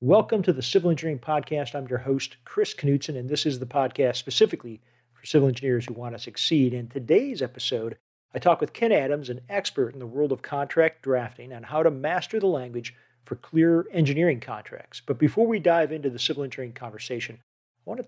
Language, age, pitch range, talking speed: English, 40-59, 125-165 Hz, 205 wpm